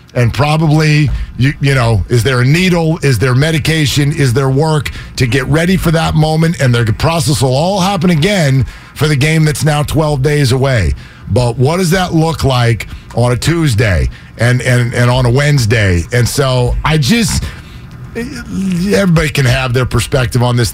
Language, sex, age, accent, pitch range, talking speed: English, male, 40-59, American, 125-155 Hz, 180 wpm